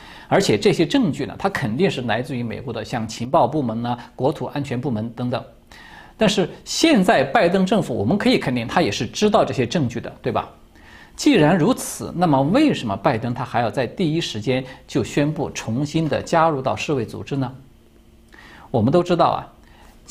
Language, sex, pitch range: Chinese, male, 120-180 Hz